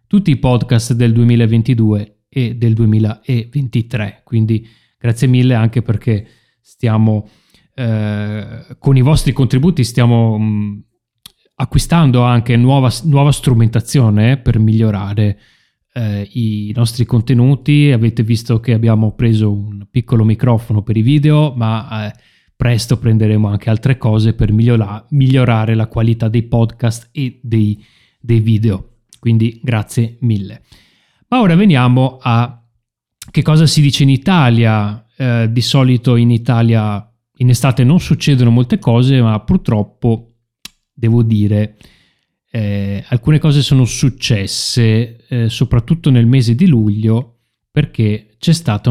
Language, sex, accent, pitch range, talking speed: Italian, male, native, 110-130 Hz, 125 wpm